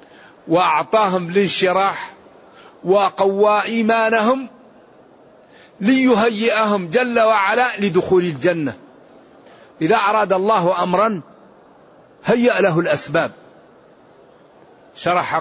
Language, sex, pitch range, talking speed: Arabic, male, 165-200 Hz, 65 wpm